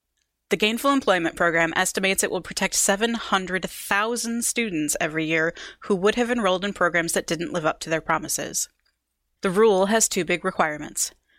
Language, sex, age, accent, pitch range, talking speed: English, female, 20-39, American, 165-210 Hz, 165 wpm